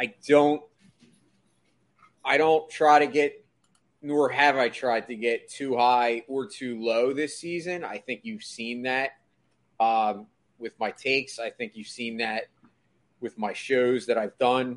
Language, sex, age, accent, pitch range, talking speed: English, male, 30-49, American, 110-130 Hz, 165 wpm